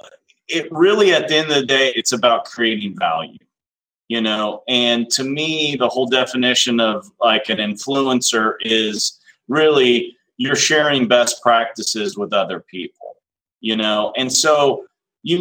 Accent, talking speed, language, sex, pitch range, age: American, 150 wpm, English, male, 120-155 Hz, 30-49